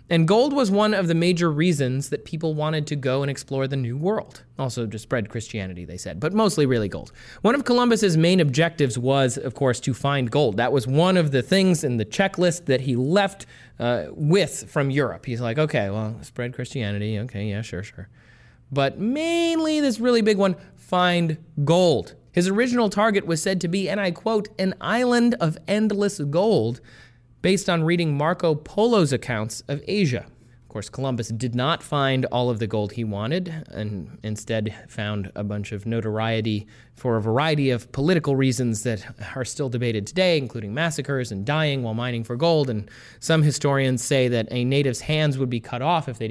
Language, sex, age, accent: English, male, 30-49, American